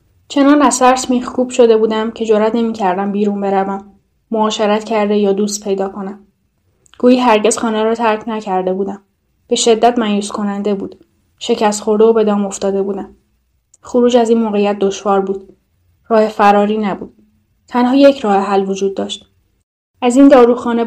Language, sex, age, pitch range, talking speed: Persian, female, 10-29, 195-225 Hz, 155 wpm